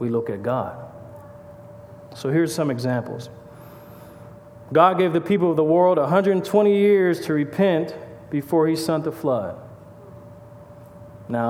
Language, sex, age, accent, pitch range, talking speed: English, male, 40-59, American, 115-165 Hz, 130 wpm